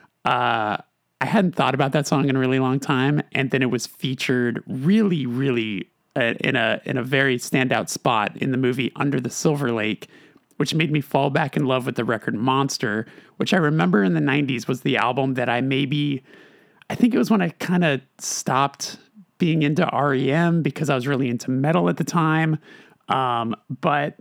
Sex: male